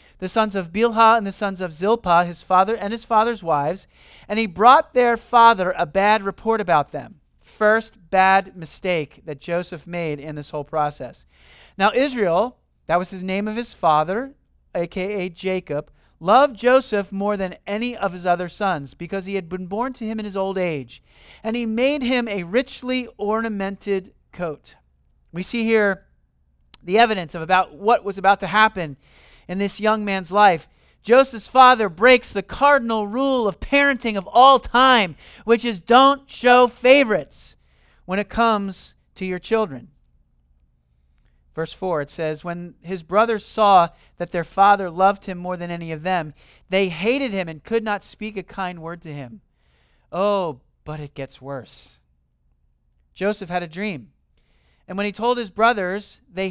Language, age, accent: English, 40-59, American